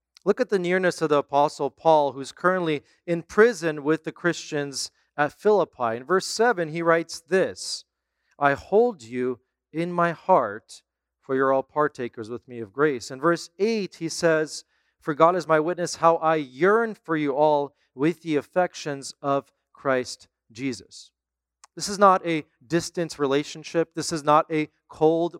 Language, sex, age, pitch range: English, male, 40-59, 130-170 Hz